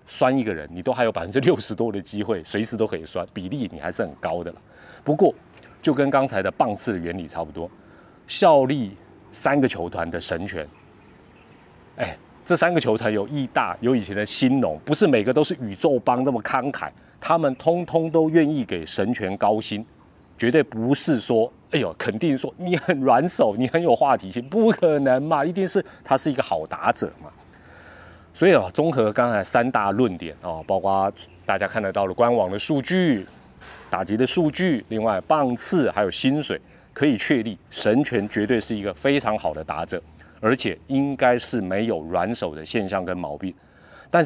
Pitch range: 95-140 Hz